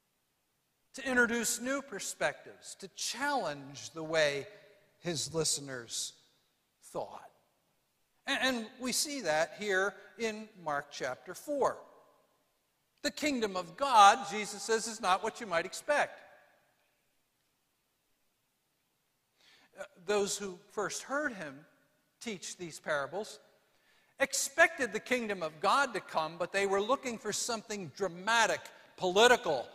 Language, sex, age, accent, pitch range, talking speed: English, male, 60-79, American, 170-230 Hz, 115 wpm